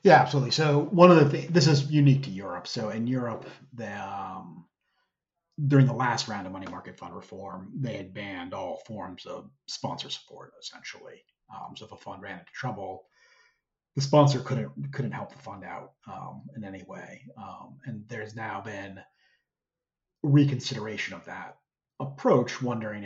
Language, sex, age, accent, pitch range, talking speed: English, male, 30-49, American, 110-150 Hz, 170 wpm